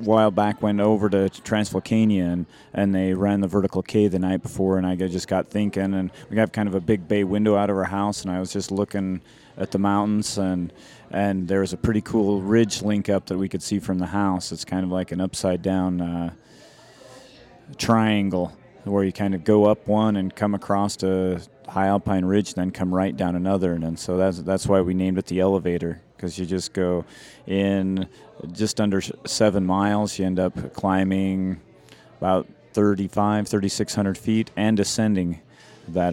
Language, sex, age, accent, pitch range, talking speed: English, male, 30-49, American, 90-100 Hz, 200 wpm